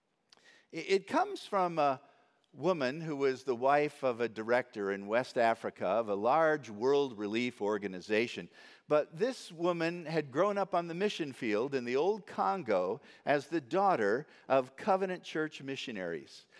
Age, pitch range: 50-69, 130-180 Hz